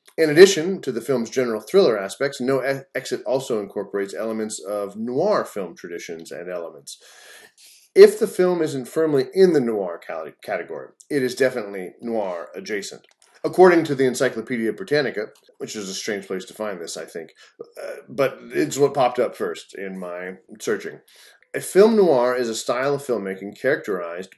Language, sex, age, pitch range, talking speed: English, male, 30-49, 115-180 Hz, 160 wpm